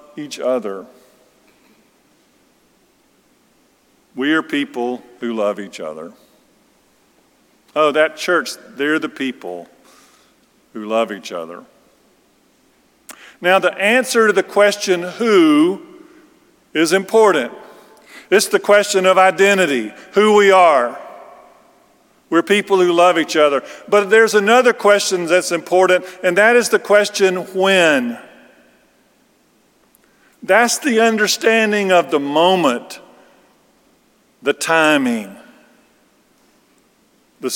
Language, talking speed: English, 100 wpm